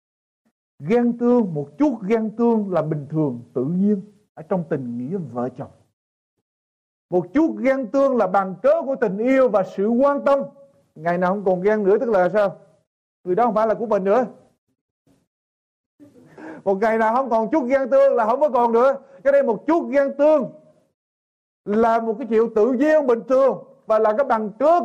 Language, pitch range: Vietnamese, 175-275 Hz